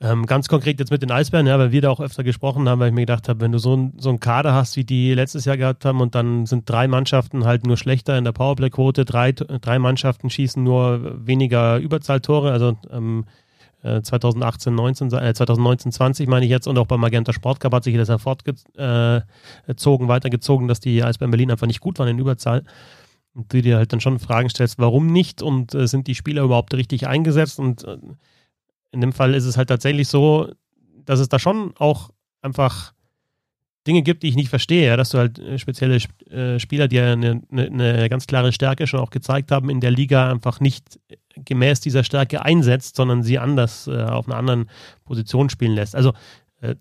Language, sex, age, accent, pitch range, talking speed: German, male, 30-49, German, 120-135 Hz, 210 wpm